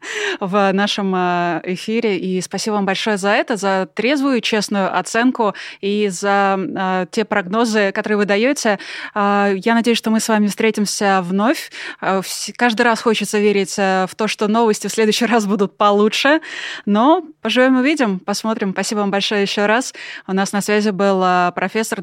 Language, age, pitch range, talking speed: Russian, 20-39, 195-230 Hz, 150 wpm